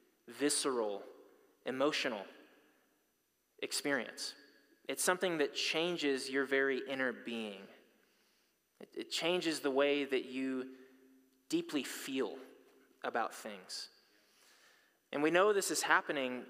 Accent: American